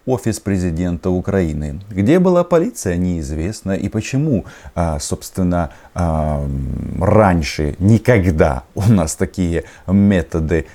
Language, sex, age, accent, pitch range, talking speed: Russian, male, 30-49, native, 85-125 Hz, 90 wpm